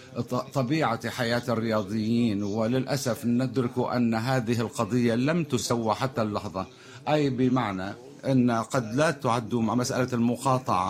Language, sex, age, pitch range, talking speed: Arabic, male, 50-69, 115-130 Hz, 115 wpm